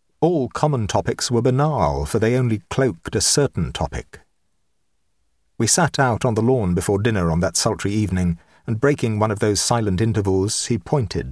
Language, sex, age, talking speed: English, male, 50-69, 175 wpm